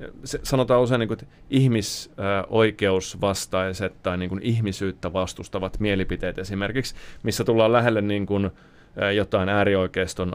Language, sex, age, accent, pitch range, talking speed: Finnish, male, 30-49, native, 100-135 Hz, 105 wpm